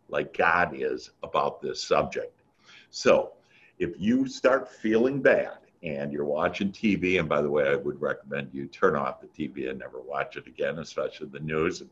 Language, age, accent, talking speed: English, 60-79, American, 185 wpm